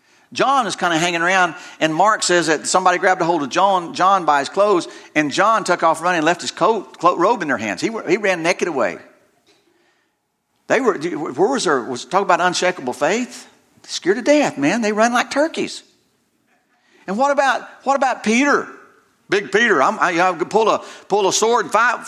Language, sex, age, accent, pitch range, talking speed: English, male, 50-69, American, 185-250 Hz, 205 wpm